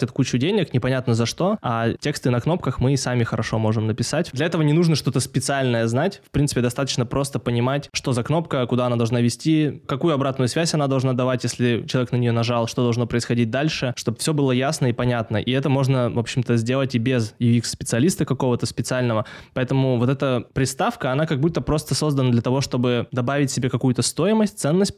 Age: 20-39